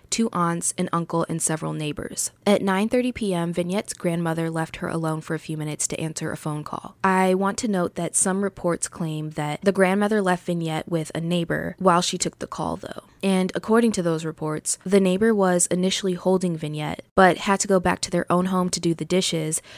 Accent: American